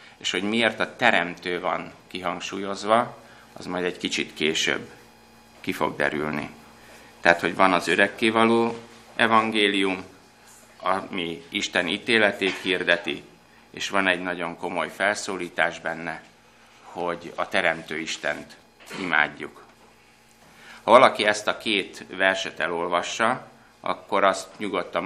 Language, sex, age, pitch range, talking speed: Hungarian, male, 60-79, 85-100 Hz, 115 wpm